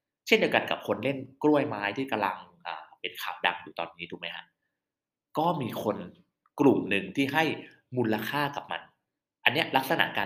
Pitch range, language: 100-130 Hz, Thai